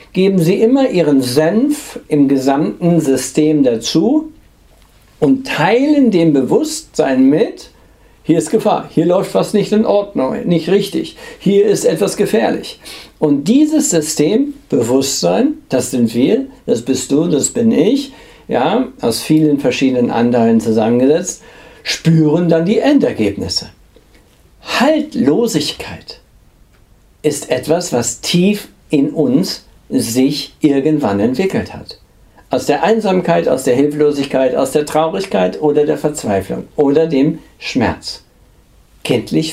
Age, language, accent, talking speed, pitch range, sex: 60-79, German, German, 120 wpm, 135-225 Hz, male